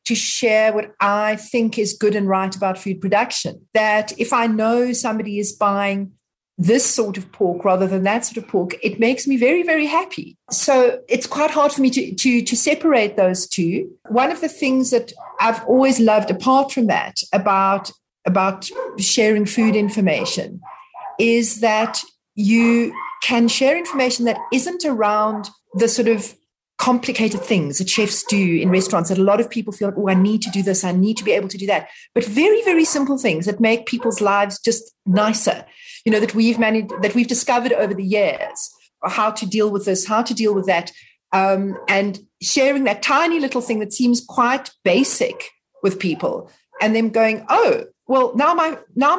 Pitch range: 200-255 Hz